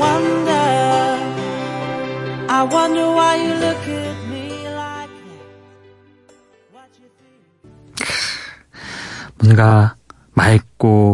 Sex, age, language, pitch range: male, 30-49, Korean, 100-140 Hz